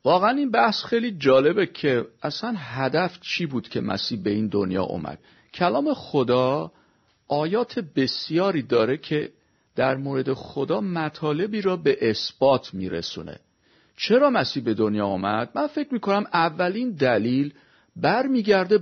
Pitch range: 130-200 Hz